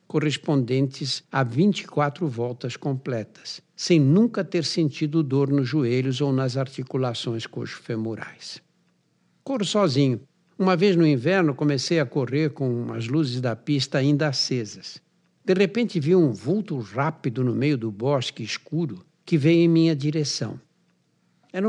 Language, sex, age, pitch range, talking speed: Portuguese, male, 60-79, 135-175 Hz, 135 wpm